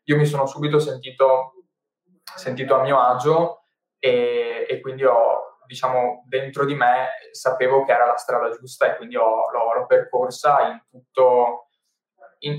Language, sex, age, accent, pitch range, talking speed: Italian, male, 20-39, native, 125-165 Hz, 155 wpm